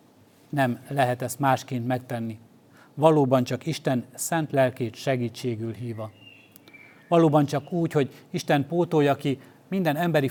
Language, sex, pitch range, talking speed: Hungarian, male, 130-150 Hz, 120 wpm